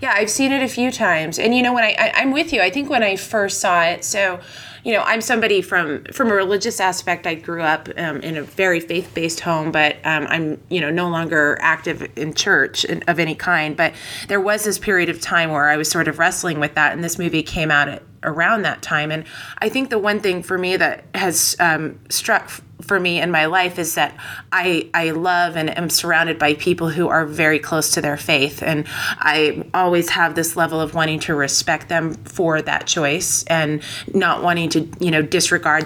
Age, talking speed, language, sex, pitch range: 30-49, 230 wpm, English, female, 155-185 Hz